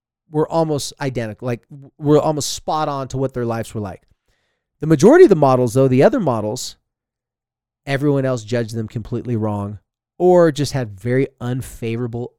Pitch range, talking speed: 115-155 Hz, 165 wpm